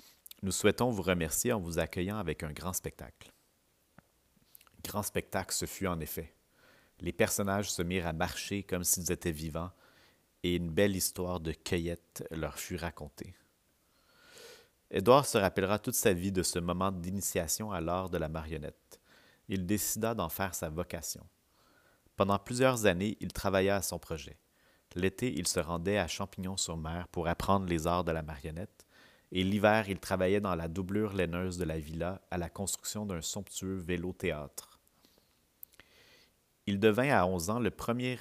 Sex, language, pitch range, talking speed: male, French, 85-100 Hz, 160 wpm